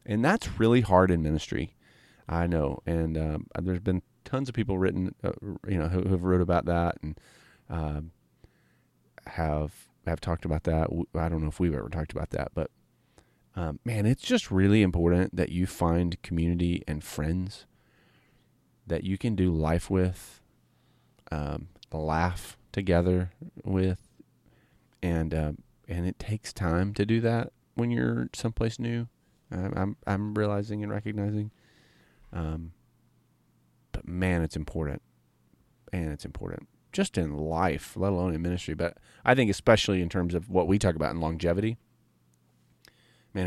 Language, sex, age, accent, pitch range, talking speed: English, male, 30-49, American, 85-105 Hz, 150 wpm